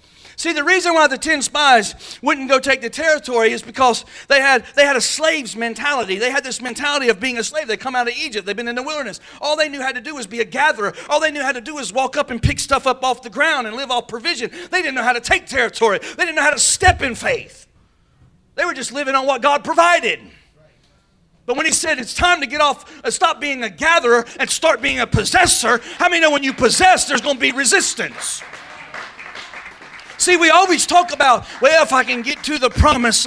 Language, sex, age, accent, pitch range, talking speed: English, male, 40-59, American, 255-330 Hz, 245 wpm